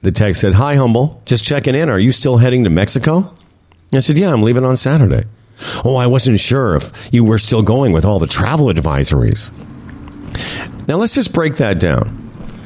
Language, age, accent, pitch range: English, 50-69, American, 105-155 Hz